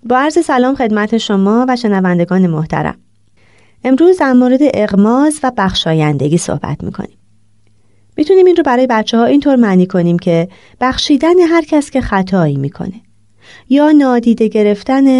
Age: 30-49